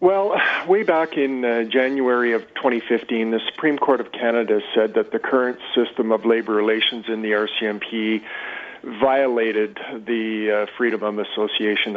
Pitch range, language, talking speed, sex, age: 110-130 Hz, English, 150 wpm, male, 40-59